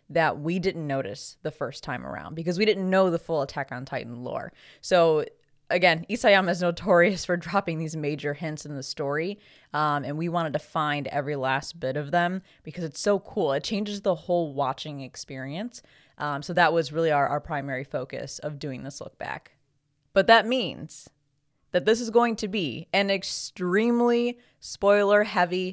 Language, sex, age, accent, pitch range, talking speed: English, female, 20-39, American, 150-195 Hz, 185 wpm